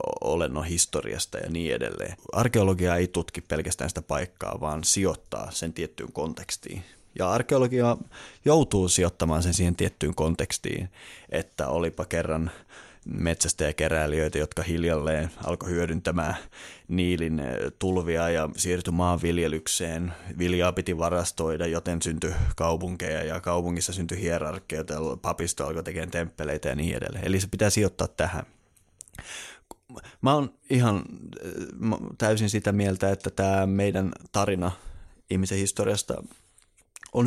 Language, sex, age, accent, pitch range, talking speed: Finnish, male, 20-39, native, 85-95 Hz, 115 wpm